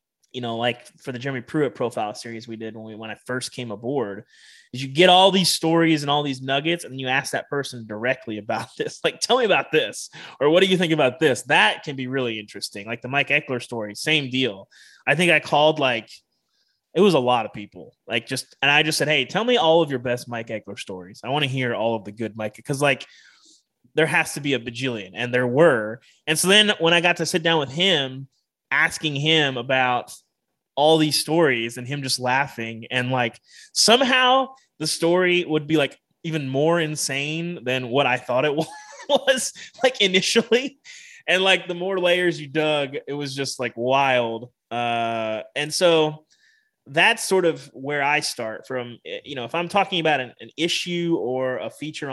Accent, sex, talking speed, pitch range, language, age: American, male, 210 wpm, 125-170 Hz, English, 20-39